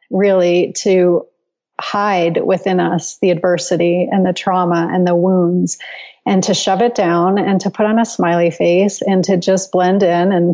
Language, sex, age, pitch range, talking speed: English, female, 30-49, 175-205 Hz, 175 wpm